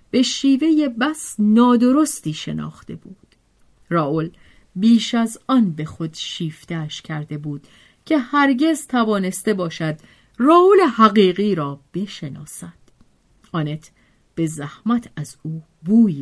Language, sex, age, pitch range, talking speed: Persian, female, 40-59, 160-235 Hz, 110 wpm